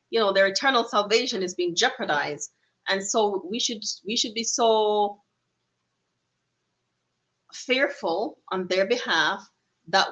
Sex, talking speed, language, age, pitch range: female, 125 wpm, English, 30-49, 180-235 Hz